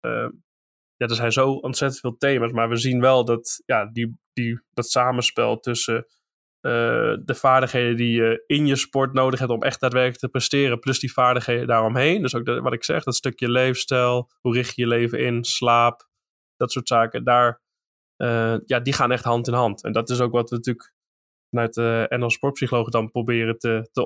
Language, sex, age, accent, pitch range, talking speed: Dutch, male, 20-39, Dutch, 115-135 Hz, 185 wpm